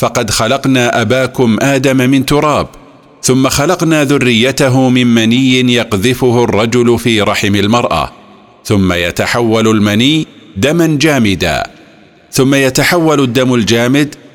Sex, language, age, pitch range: male, Arabic, 50-69, 115-140 Hz